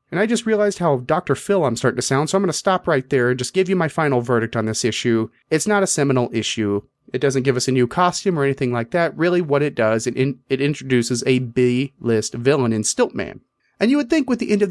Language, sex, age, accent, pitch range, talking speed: English, male, 30-49, American, 125-185 Hz, 265 wpm